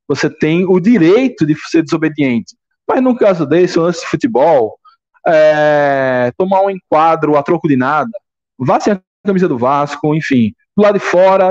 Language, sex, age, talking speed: Portuguese, male, 20-39, 165 wpm